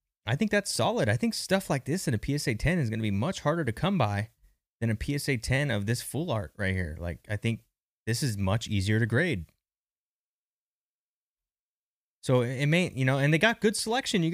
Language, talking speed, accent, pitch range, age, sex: English, 220 wpm, American, 115-180 Hz, 20-39, male